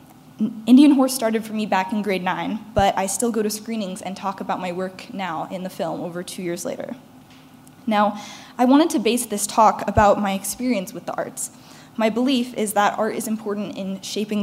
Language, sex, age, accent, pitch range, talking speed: English, female, 10-29, American, 195-240 Hz, 210 wpm